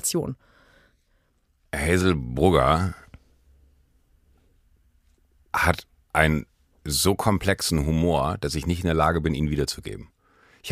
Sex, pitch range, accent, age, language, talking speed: male, 85-110 Hz, German, 50-69, German, 95 wpm